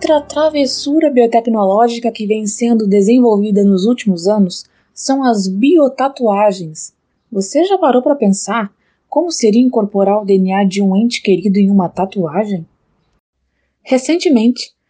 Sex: female